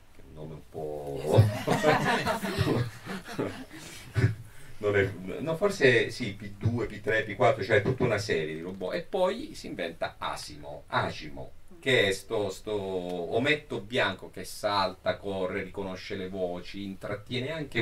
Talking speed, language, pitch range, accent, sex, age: 125 wpm, Italian, 90-115 Hz, native, male, 50-69